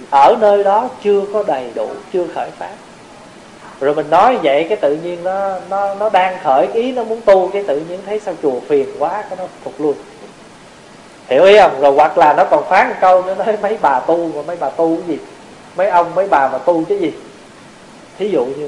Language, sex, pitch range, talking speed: Vietnamese, male, 175-240 Hz, 230 wpm